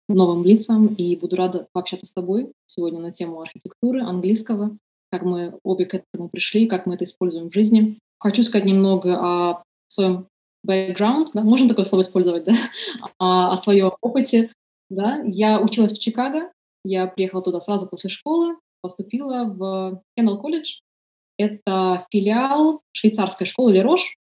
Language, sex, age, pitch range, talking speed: Russian, female, 20-39, 185-230 Hz, 150 wpm